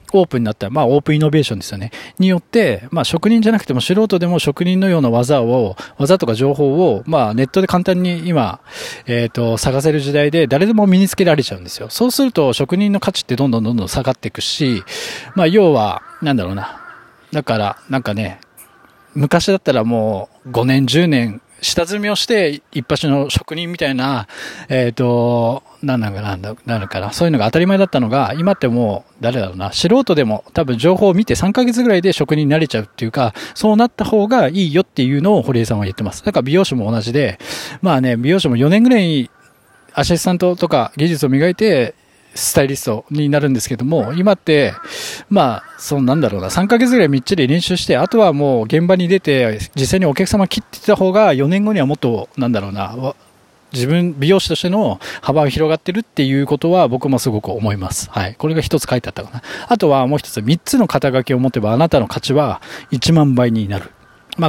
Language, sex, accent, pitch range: Japanese, male, native, 120-180 Hz